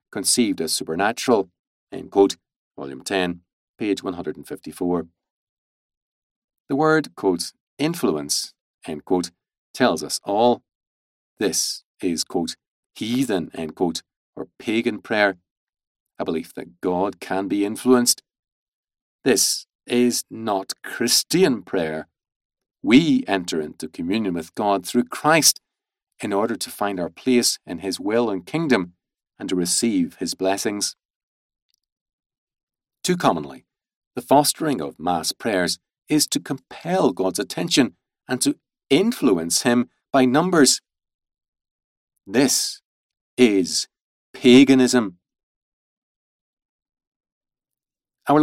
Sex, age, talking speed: male, 40-59, 105 wpm